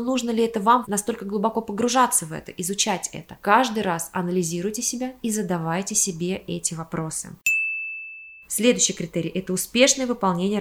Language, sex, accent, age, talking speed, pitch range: Russian, female, native, 20-39, 140 wpm, 180-220 Hz